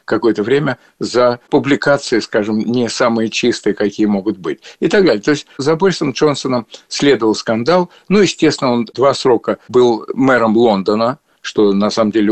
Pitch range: 115-155 Hz